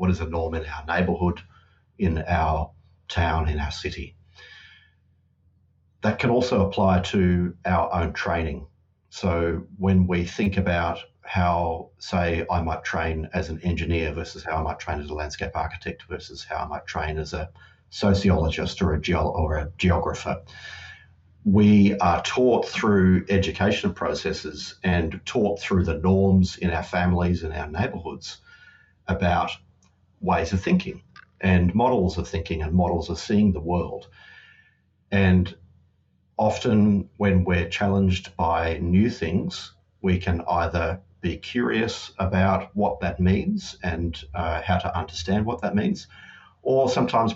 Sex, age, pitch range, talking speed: male, 40-59, 85-95 Hz, 145 wpm